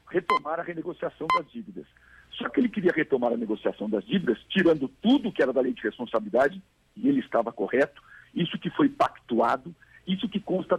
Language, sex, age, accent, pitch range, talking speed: English, male, 60-79, Brazilian, 150-230 Hz, 185 wpm